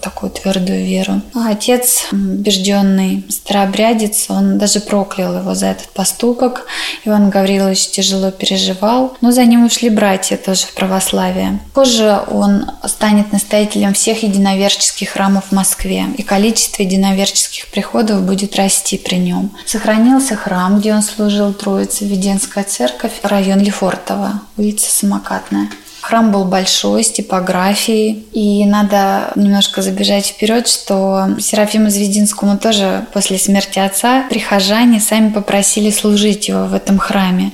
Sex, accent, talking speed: female, native, 130 wpm